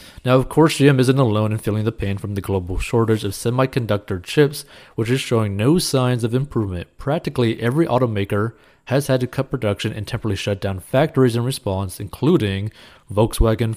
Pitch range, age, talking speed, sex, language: 105-130 Hz, 30-49, 180 wpm, male, English